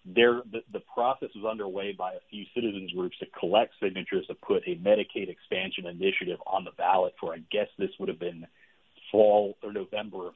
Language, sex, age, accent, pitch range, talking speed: English, male, 40-59, American, 100-135 Hz, 195 wpm